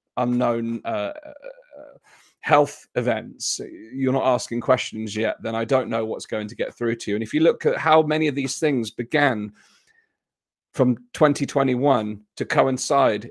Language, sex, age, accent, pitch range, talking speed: English, male, 30-49, British, 115-150 Hz, 160 wpm